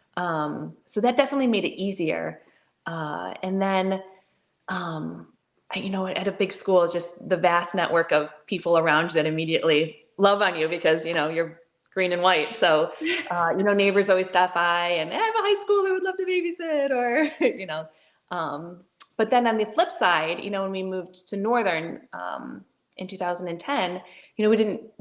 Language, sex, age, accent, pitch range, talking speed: English, female, 20-39, American, 155-200 Hz, 195 wpm